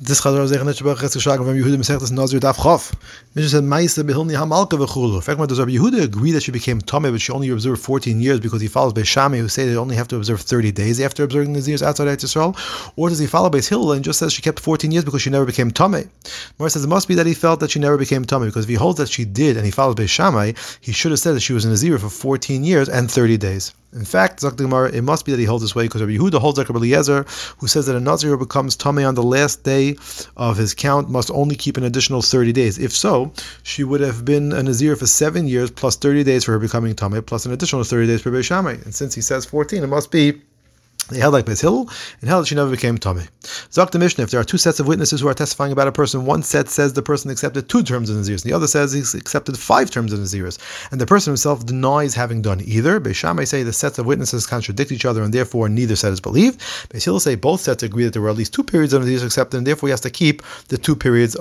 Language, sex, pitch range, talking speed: English, male, 120-150 Hz, 245 wpm